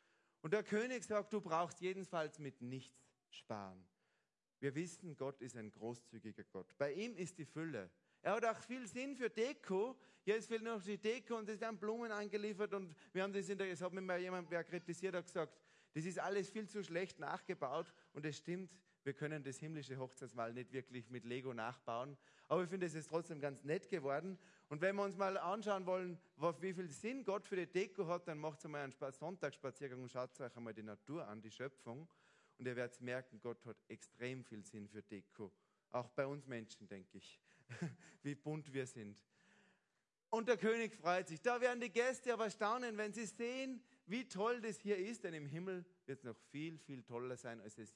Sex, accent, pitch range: male, German, 135-210 Hz